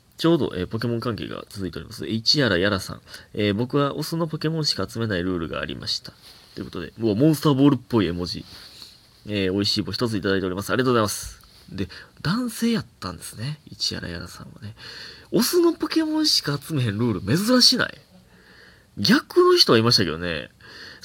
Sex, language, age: male, Japanese, 20-39